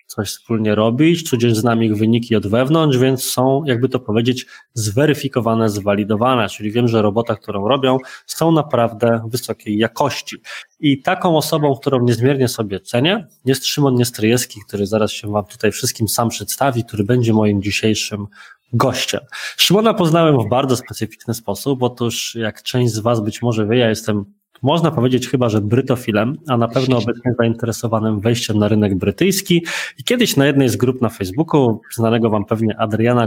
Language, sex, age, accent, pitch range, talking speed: Polish, male, 20-39, native, 110-135 Hz, 165 wpm